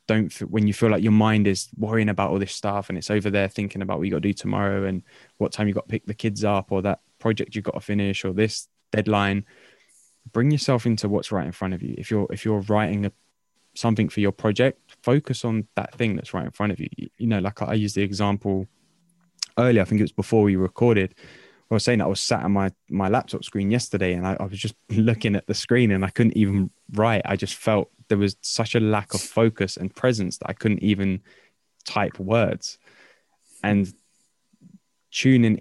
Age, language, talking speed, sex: 10-29, English, 230 wpm, male